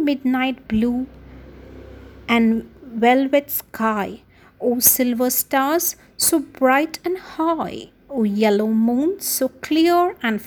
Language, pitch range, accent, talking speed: English, 210-315 Hz, Indian, 105 wpm